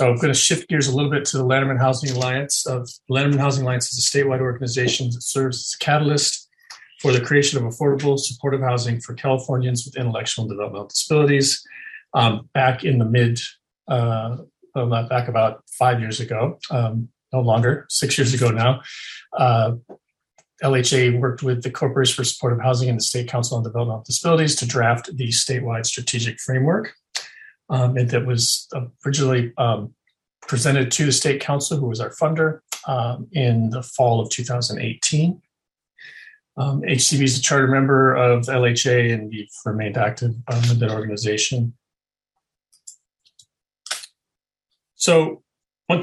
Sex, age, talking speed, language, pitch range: male, 40-59, 160 wpm, English, 120-140 Hz